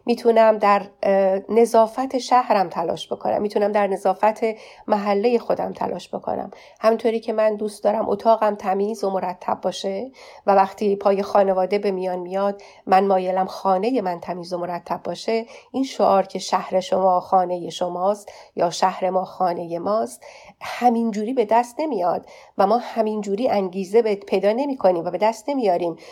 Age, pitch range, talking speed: 40-59, 185-220 Hz, 150 wpm